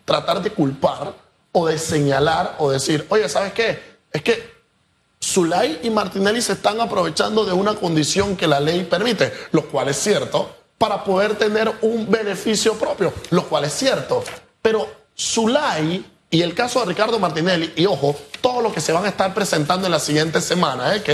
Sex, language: male, Spanish